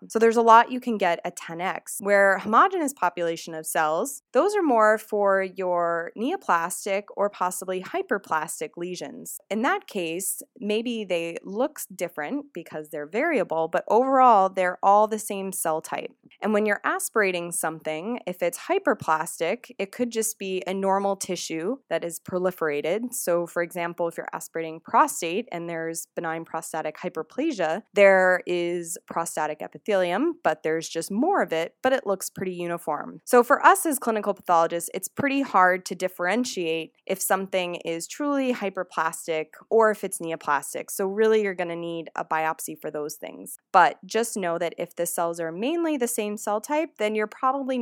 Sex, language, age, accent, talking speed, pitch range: female, English, 20-39, American, 165 wpm, 165-220 Hz